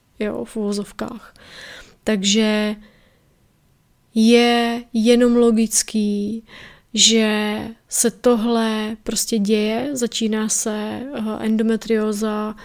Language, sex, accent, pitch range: Czech, female, native, 210-230 Hz